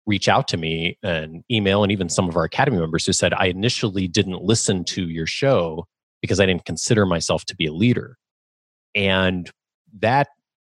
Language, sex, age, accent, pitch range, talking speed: English, male, 30-49, American, 90-115 Hz, 185 wpm